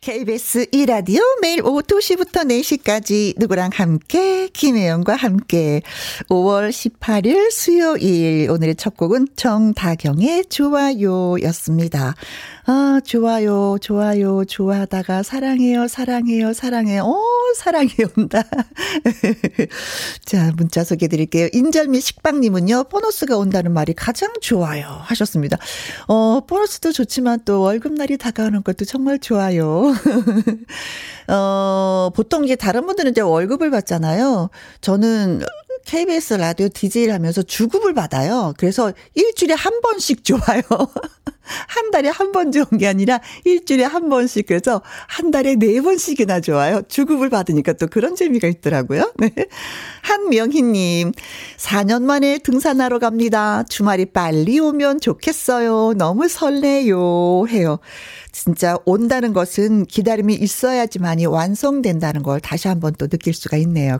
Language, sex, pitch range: Korean, female, 180-270 Hz